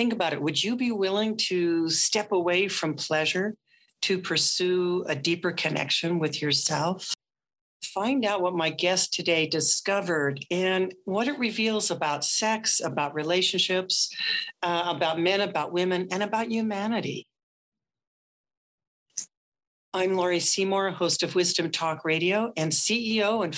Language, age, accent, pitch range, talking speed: English, 60-79, American, 155-195 Hz, 135 wpm